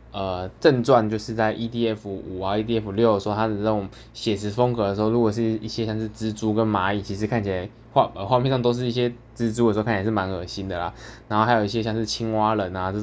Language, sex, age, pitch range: Chinese, male, 20-39, 105-120 Hz